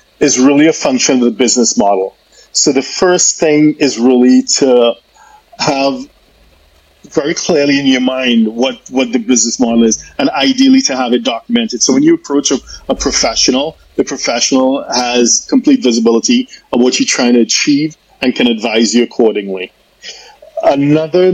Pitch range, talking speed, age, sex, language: 120-160 Hz, 160 wpm, 40-59, male, English